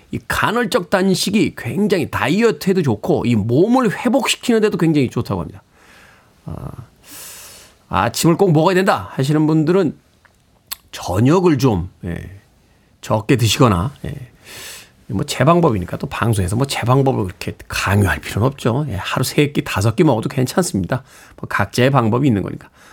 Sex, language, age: male, Korean, 40-59